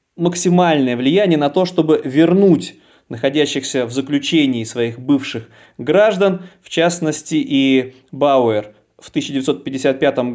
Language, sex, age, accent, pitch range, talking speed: Russian, male, 20-39, native, 130-170 Hz, 105 wpm